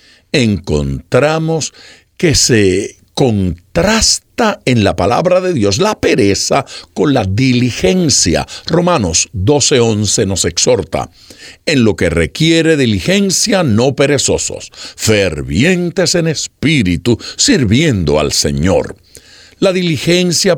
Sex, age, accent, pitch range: male, 60-79, American, 100-165 Hz